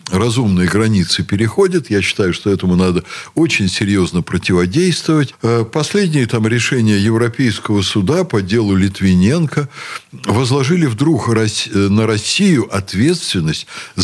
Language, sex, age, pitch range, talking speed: Russian, male, 60-79, 100-160 Hz, 105 wpm